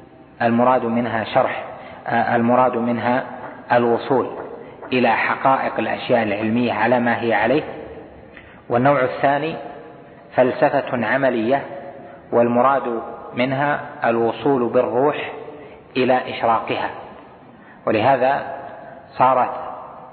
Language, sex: Arabic, male